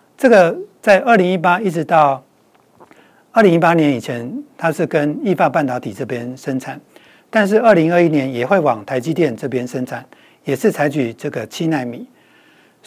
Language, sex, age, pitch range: Chinese, male, 60-79, 140-195 Hz